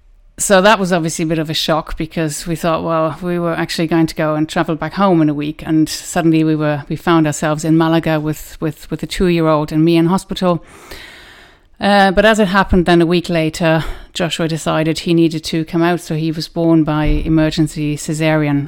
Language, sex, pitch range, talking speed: English, female, 155-175 Hz, 215 wpm